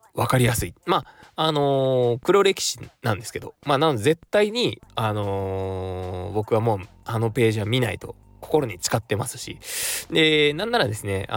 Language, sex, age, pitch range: Japanese, male, 20-39, 100-145 Hz